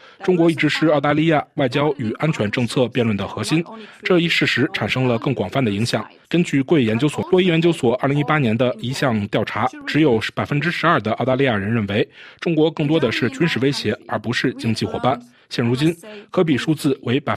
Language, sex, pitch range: Chinese, male, 120-165 Hz